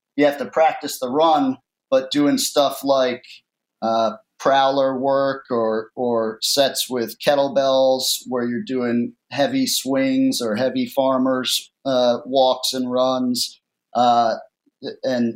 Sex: male